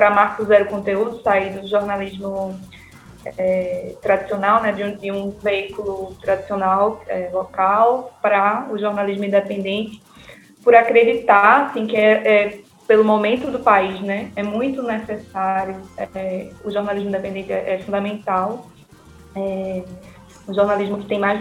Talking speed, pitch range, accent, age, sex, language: 135 wpm, 195-220 Hz, Brazilian, 10-29, female, Portuguese